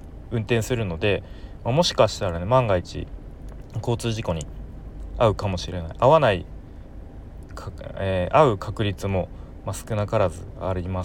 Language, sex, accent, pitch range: Japanese, male, native, 80-105 Hz